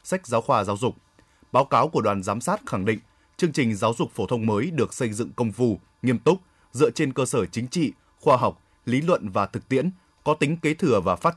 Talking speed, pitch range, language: 245 wpm, 110-150 Hz, Vietnamese